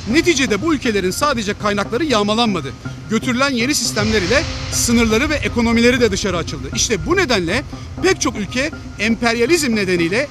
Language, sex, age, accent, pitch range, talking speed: Turkish, male, 40-59, native, 210-275 Hz, 140 wpm